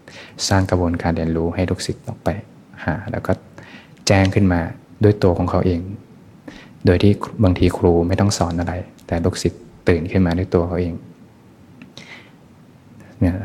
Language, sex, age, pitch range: Thai, male, 20-39, 85-100 Hz